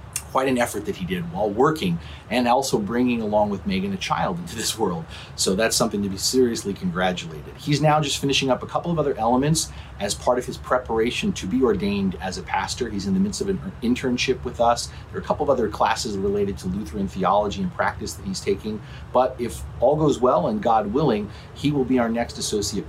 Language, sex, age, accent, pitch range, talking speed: English, male, 40-59, American, 90-150 Hz, 225 wpm